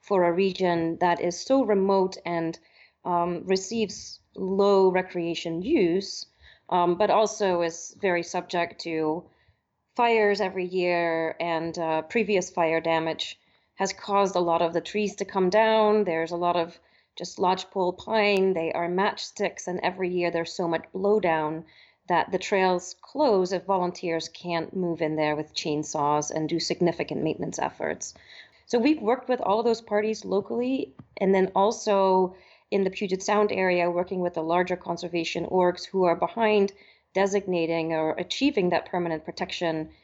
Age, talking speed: 30-49, 155 wpm